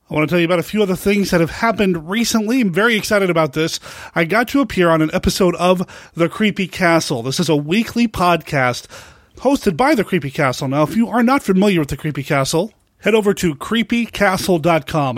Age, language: 30-49, English